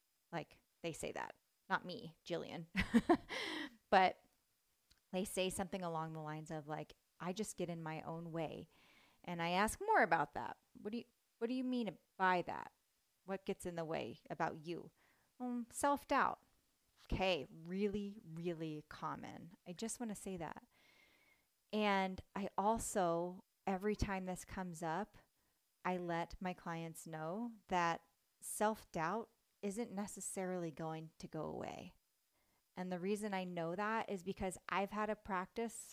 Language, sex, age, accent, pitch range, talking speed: English, female, 30-49, American, 180-220 Hz, 150 wpm